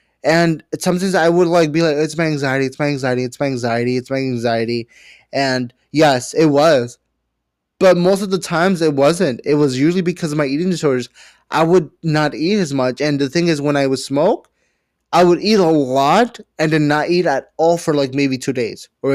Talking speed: 215 wpm